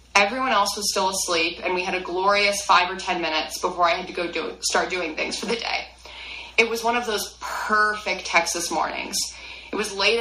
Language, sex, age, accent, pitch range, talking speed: English, female, 20-39, American, 165-205 Hz, 215 wpm